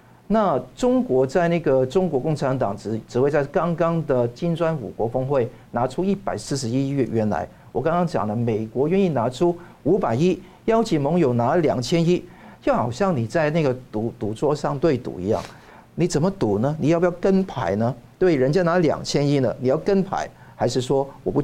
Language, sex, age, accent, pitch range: Chinese, male, 50-69, native, 120-175 Hz